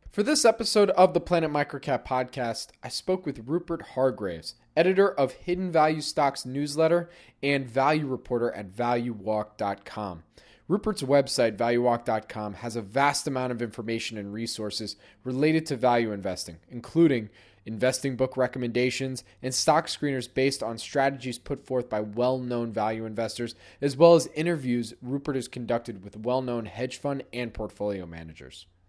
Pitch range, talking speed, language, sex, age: 115-145 Hz, 145 wpm, English, male, 20-39